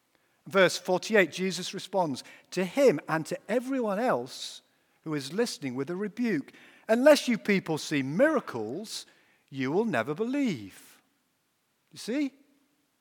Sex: male